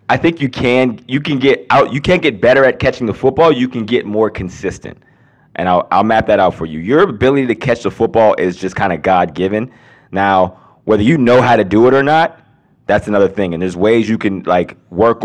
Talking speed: 235 wpm